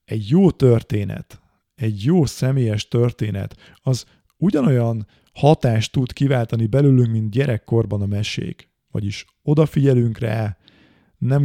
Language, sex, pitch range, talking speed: Hungarian, male, 105-135 Hz, 110 wpm